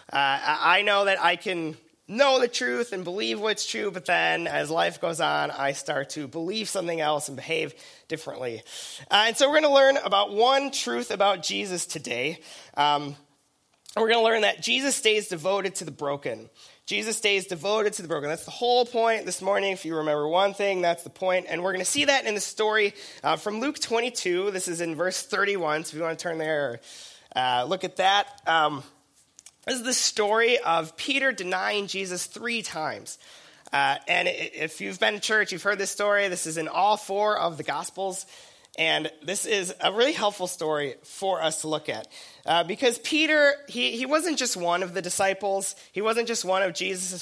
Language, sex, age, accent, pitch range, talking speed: English, male, 20-39, American, 165-215 Hz, 205 wpm